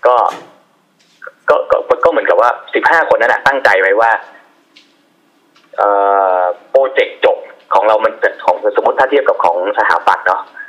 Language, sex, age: Thai, male, 20-39